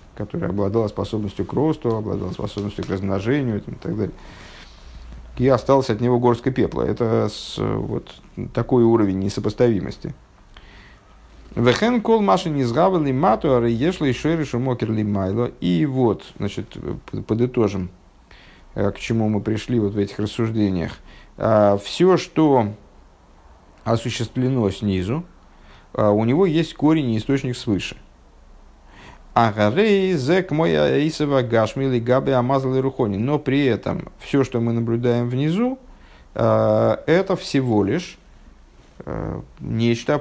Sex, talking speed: male, 100 wpm